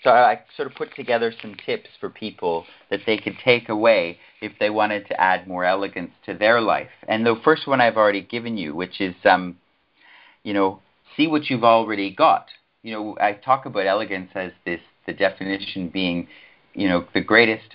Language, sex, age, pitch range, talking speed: English, male, 40-59, 90-110 Hz, 195 wpm